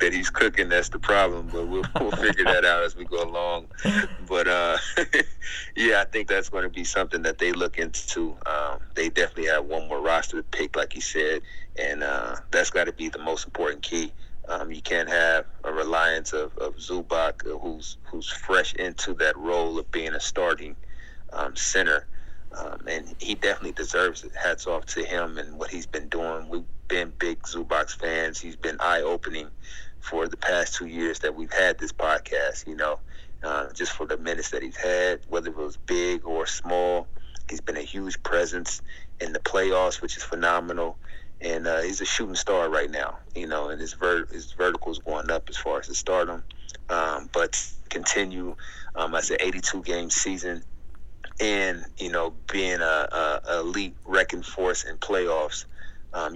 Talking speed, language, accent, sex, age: 190 wpm, English, American, male, 30-49